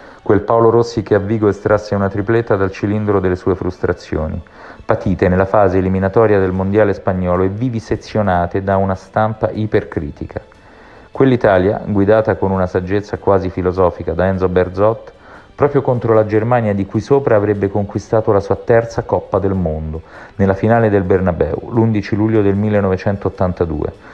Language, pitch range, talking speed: Italian, 95-115 Hz, 150 wpm